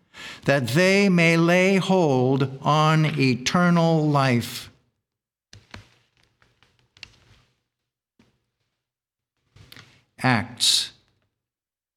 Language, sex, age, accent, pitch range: English, male, 60-79, American, 120-160 Hz